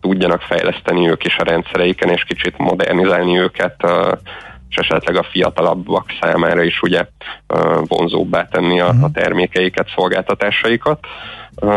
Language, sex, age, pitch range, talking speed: Hungarian, male, 30-49, 90-100 Hz, 115 wpm